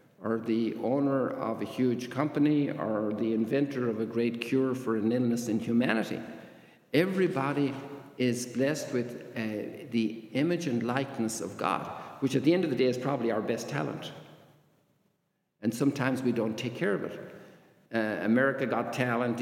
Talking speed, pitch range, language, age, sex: 165 wpm, 115-135 Hz, English, 60-79, male